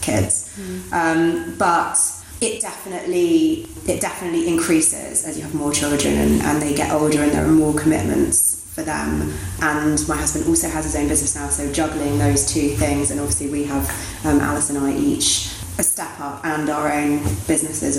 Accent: British